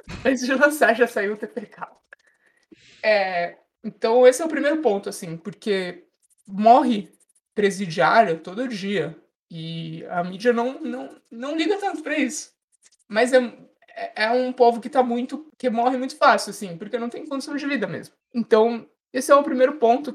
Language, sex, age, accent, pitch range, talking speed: Portuguese, male, 20-39, Brazilian, 205-255 Hz, 165 wpm